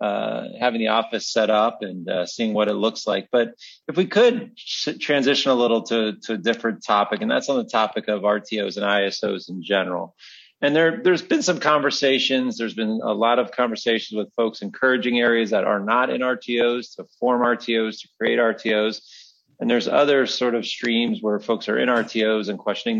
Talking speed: 200 wpm